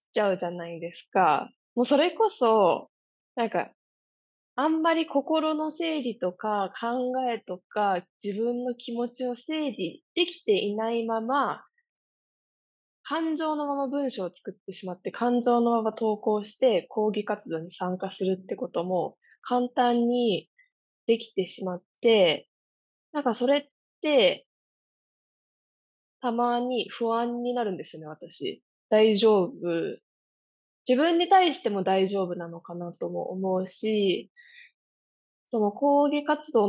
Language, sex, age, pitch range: Japanese, female, 20-39, 190-260 Hz